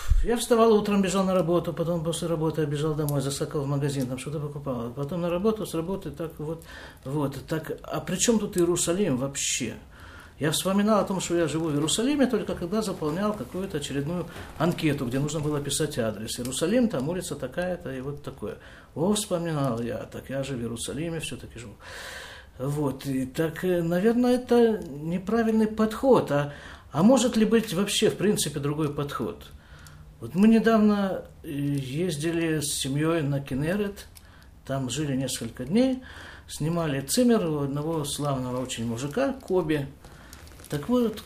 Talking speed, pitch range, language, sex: 155 wpm, 135-195 Hz, Russian, male